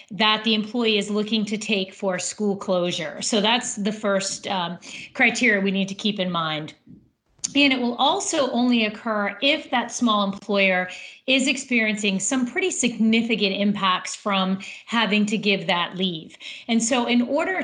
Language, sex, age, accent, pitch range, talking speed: English, female, 40-59, American, 195-230 Hz, 165 wpm